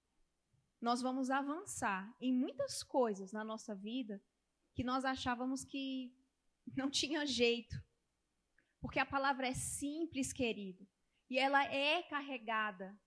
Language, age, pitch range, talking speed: Portuguese, 20-39, 230-280 Hz, 120 wpm